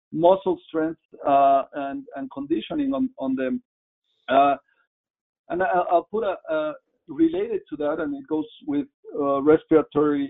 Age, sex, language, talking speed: 50-69, male, English, 140 wpm